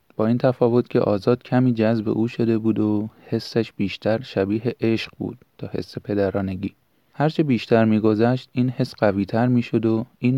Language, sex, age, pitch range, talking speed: Persian, male, 30-49, 105-125 Hz, 160 wpm